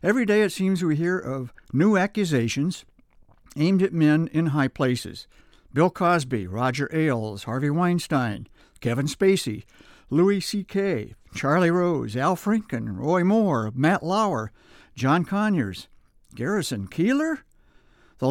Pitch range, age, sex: 130-180 Hz, 60-79, male